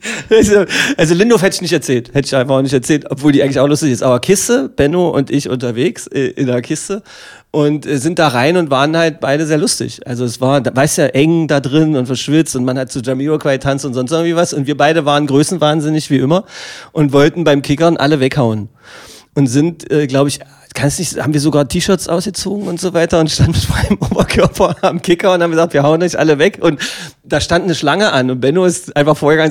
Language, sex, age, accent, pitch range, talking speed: German, male, 30-49, German, 140-175 Hz, 230 wpm